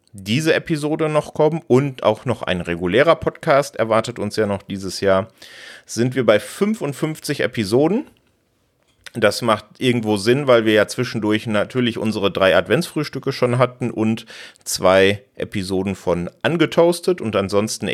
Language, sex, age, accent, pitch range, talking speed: German, male, 40-59, German, 100-130 Hz, 140 wpm